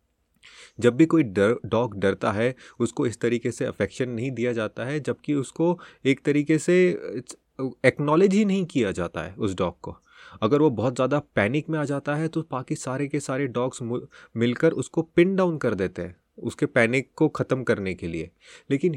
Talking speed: 185 wpm